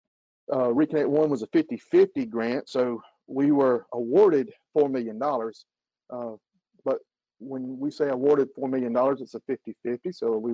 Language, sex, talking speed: English, male, 160 wpm